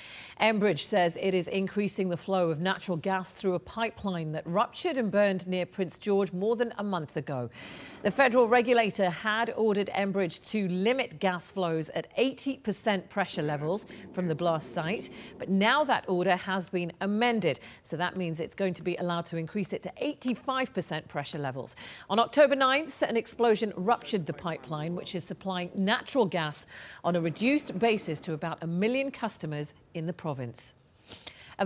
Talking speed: 175 wpm